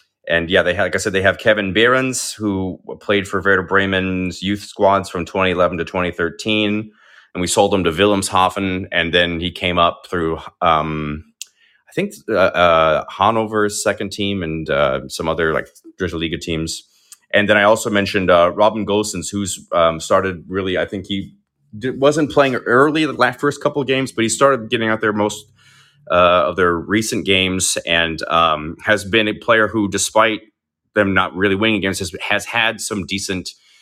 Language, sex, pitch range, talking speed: English, male, 85-105 Hz, 185 wpm